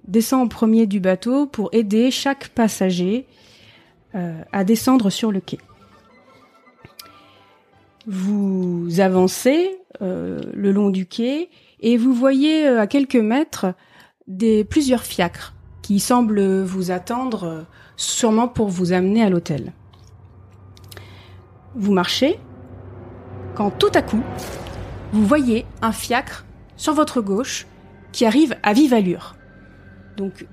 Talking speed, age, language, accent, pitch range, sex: 120 wpm, 30-49, French, French, 160-240 Hz, female